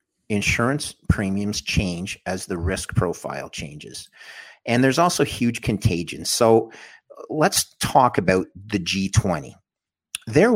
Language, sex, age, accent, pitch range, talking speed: English, male, 50-69, American, 95-120 Hz, 115 wpm